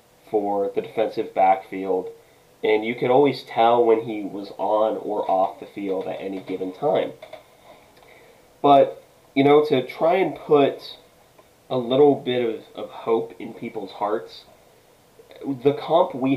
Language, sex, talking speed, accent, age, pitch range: English, male, 145 wpm, American, 20-39, 105-135 Hz